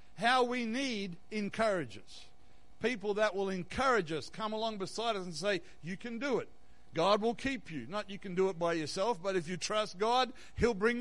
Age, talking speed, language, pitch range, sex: 60-79, 200 wpm, English, 150-215 Hz, male